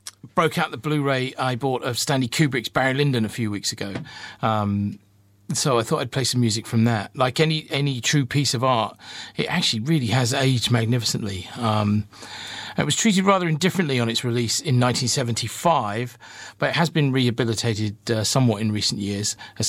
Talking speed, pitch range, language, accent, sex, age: 185 wpm, 105-135 Hz, English, British, male, 40-59